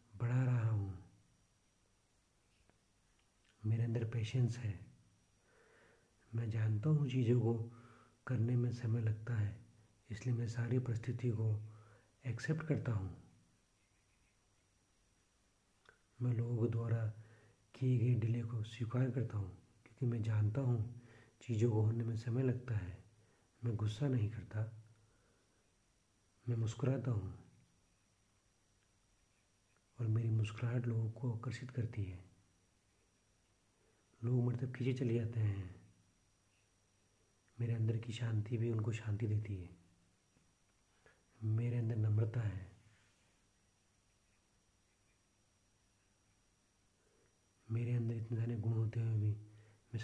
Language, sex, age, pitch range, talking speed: English, male, 50-69, 105-115 Hz, 105 wpm